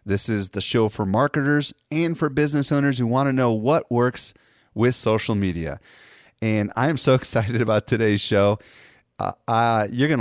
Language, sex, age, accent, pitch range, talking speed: English, male, 30-49, American, 95-120 Hz, 180 wpm